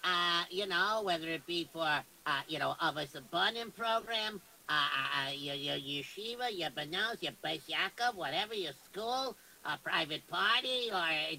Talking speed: 160 wpm